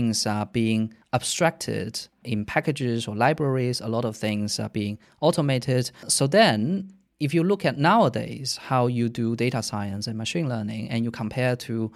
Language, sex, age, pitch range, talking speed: English, male, 20-39, 110-145 Hz, 170 wpm